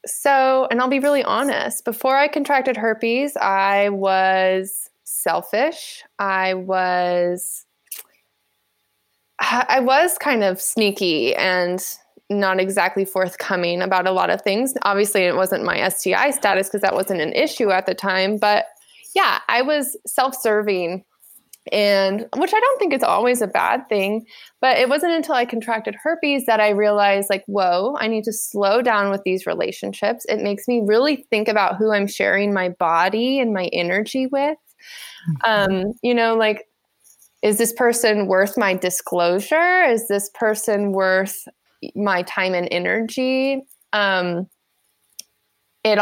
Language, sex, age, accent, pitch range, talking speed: English, female, 20-39, American, 190-255 Hz, 150 wpm